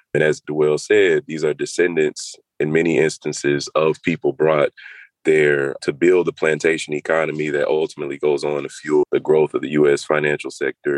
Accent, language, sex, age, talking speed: American, English, male, 30-49, 175 wpm